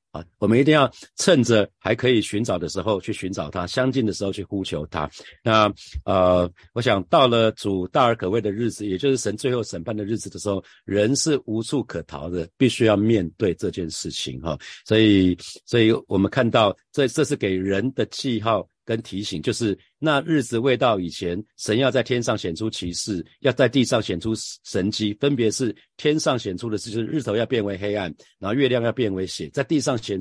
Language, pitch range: Chinese, 100-125 Hz